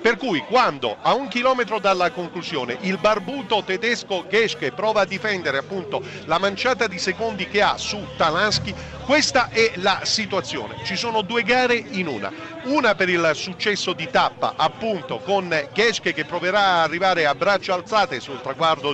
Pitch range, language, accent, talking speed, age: 155-205 Hz, Italian, native, 165 wpm, 50-69